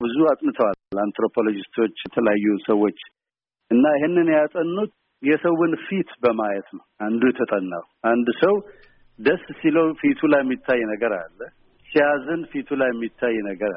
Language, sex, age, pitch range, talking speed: Amharic, male, 60-79, 120-155 Hz, 125 wpm